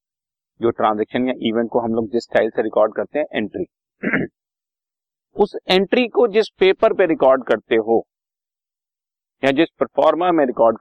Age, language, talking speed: 50-69, Hindi, 155 wpm